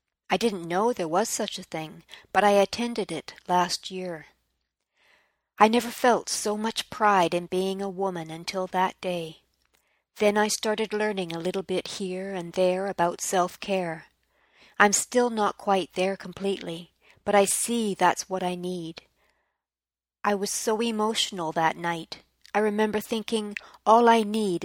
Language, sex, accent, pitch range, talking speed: English, female, American, 175-210 Hz, 155 wpm